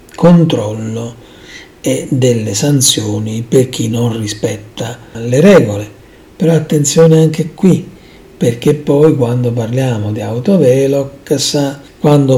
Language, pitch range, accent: Italian, 120-165 Hz, native